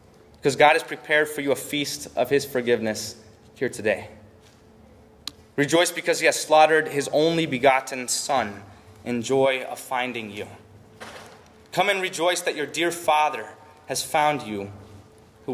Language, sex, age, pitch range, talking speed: English, male, 20-39, 110-150 Hz, 145 wpm